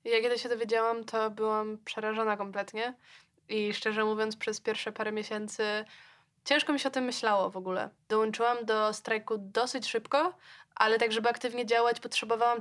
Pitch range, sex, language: 210-245 Hz, female, Polish